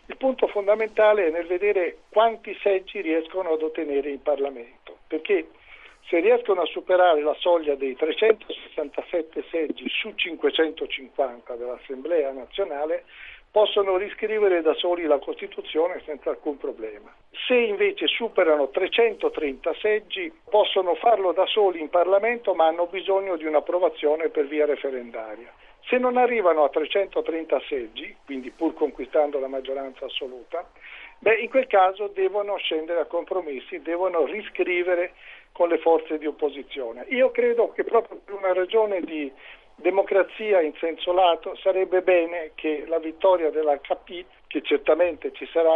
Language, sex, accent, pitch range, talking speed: Italian, male, native, 155-220 Hz, 135 wpm